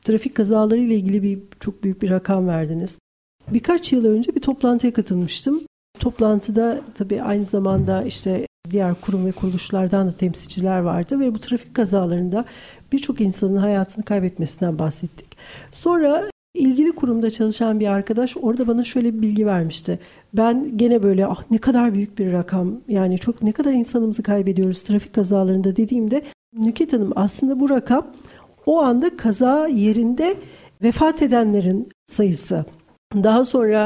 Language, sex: Turkish, female